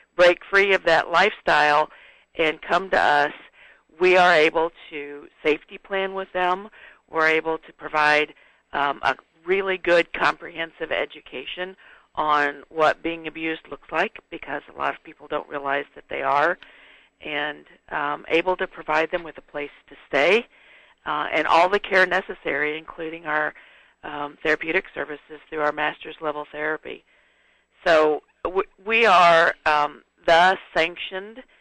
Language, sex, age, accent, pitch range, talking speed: English, female, 50-69, American, 150-170 Hz, 145 wpm